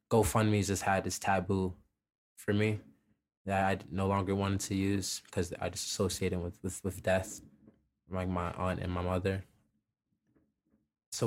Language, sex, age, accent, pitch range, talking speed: English, male, 20-39, American, 95-105 Hz, 155 wpm